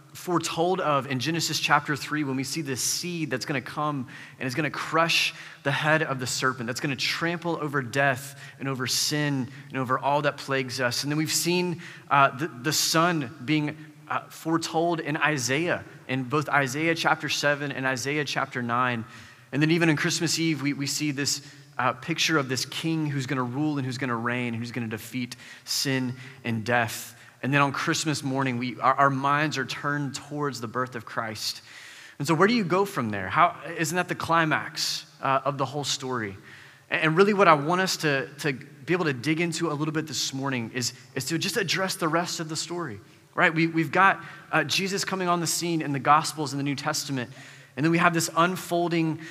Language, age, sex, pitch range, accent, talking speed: English, 30-49, male, 135-165 Hz, American, 220 wpm